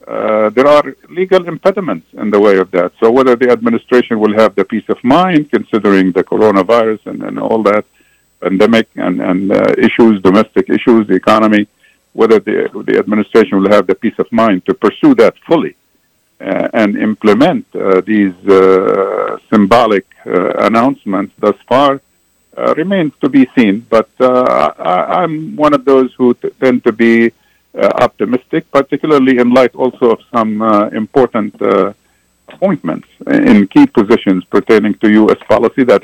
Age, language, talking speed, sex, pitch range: 50-69, Arabic, 160 wpm, male, 100-125 Hz